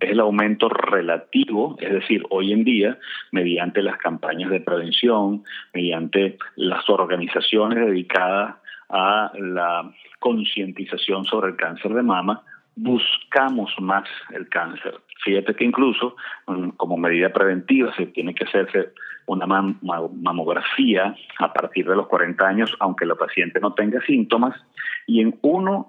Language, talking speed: English, 135 wpm